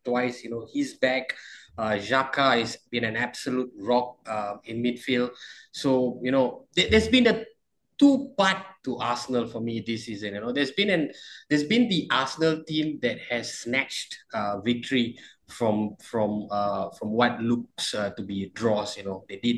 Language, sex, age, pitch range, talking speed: English, male, 20-39, 115-145 Hz, 185 wpm